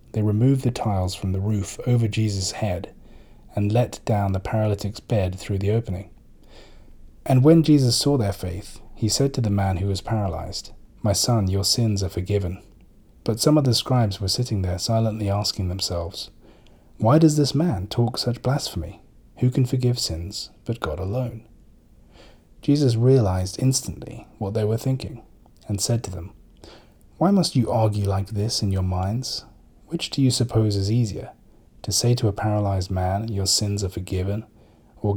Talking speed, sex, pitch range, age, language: 170 wpm, male, 95-125 Hz, 30-49, English